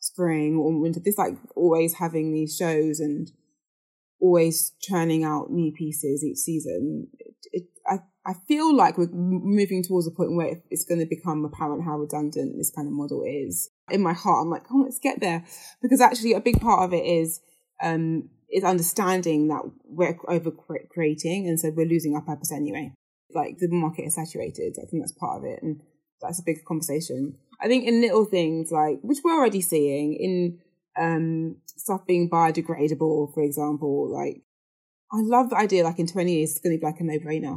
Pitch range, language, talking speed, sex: 150-175 Hz, English, 195 wpm, female